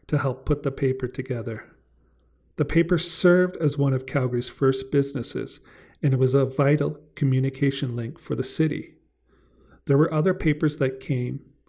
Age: 40-59